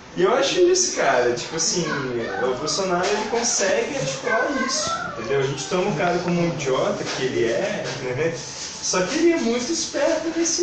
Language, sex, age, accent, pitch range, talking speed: Portuguese, male, 20-39, Brazilian, 140-195 Hz, 185 wpm